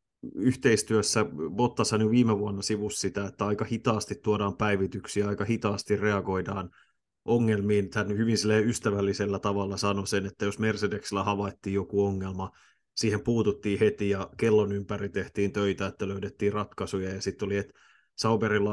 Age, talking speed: 30-49, 140 wpm